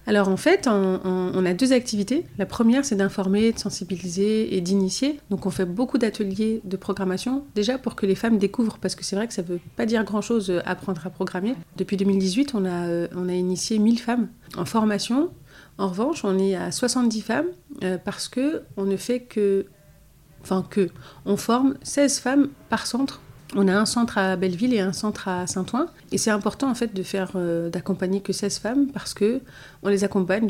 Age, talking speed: 40-59, 200 wpm